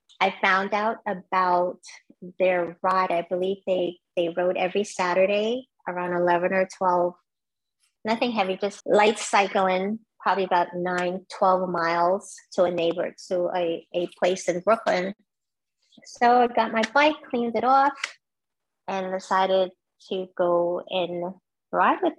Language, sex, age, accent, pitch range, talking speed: English, female, 30-49, American, 180-210 Hz, 140 wpm